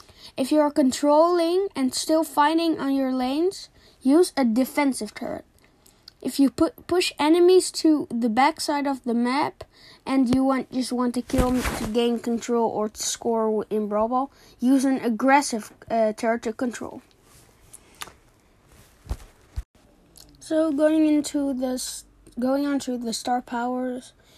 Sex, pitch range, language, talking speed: female, 230-285 Hz, English, 145 wpm